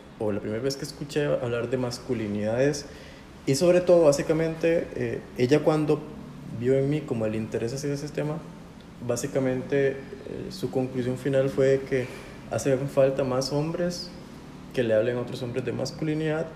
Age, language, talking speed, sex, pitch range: 30-49, Spanish, 160 wpm, male, 120-140 Hz